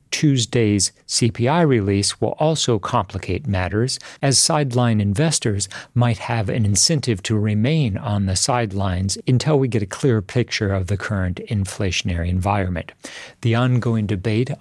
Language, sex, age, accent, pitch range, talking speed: English, male, 50-69, American, 100-125 Hz, 135 wpm